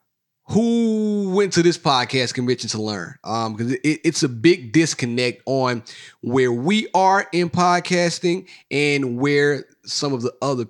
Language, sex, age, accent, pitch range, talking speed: English, male, 30-49, American, 115-145 Hz, 145 wpm